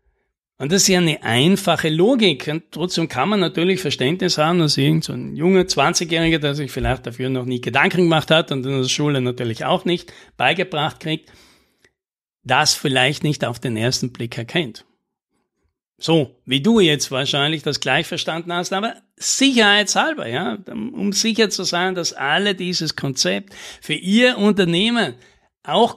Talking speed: 155 wpm